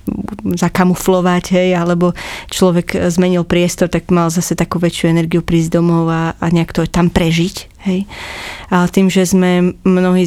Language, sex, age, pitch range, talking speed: Slovak, female, 20-39, 170-180 Hz, 150 wpm